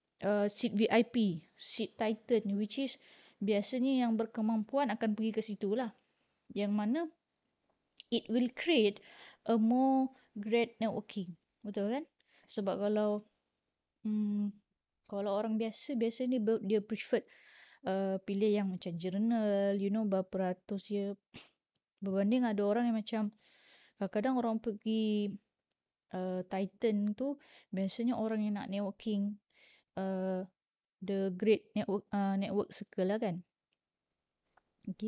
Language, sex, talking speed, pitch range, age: Malay, female, 125 wpm, 200-235 Hz, 20-39